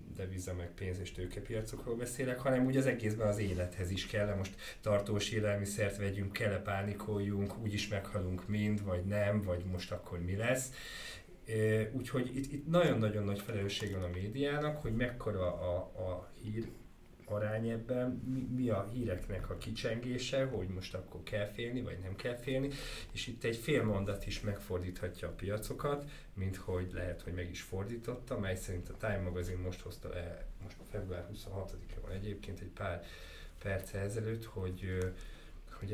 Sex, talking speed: male, 155 wpm